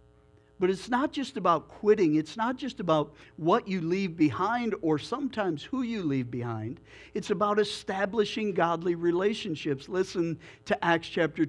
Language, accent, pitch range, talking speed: English, American, 160-220 Hz, 150 wpm